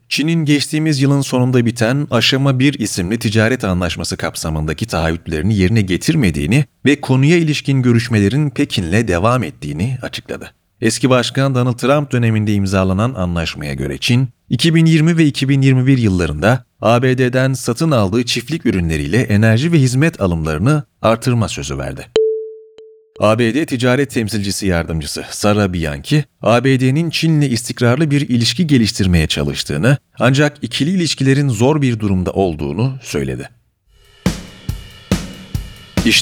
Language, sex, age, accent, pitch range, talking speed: Turkish, male, 40-59, native, 105-145 Hz, 115 wpm